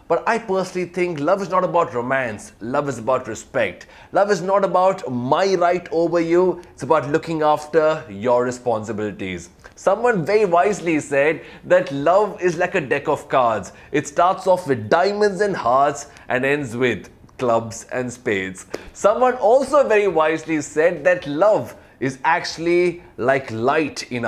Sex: male